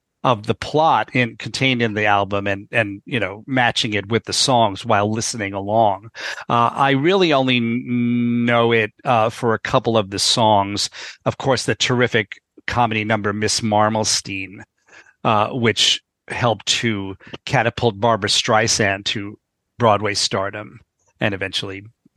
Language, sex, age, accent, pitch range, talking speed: English, male, 40-59, American, 105-125 Hz, 145 wpm